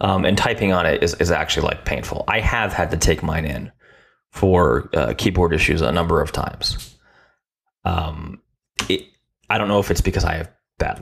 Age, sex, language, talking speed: 20-39, male, English, 190 wpm